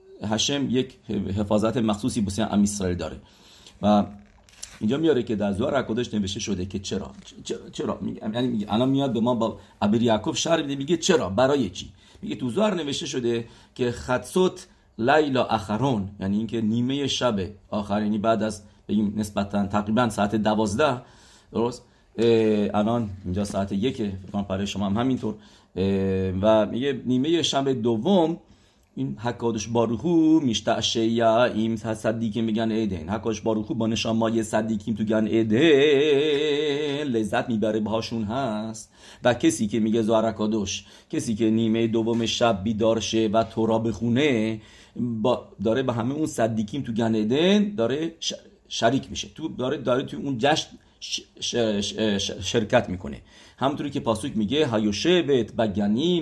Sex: male